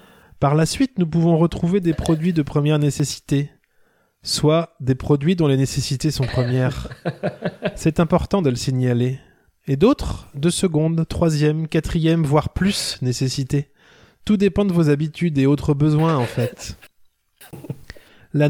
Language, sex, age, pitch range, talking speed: French, male, 20-39, 135-175 Hz, 145 wpm